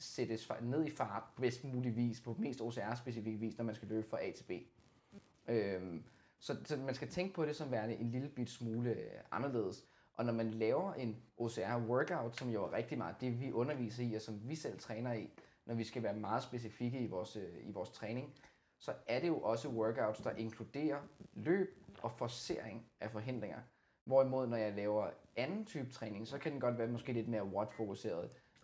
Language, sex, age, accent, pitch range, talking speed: Danish, male, 20-39, native, 110-125 Hz, 195 wpm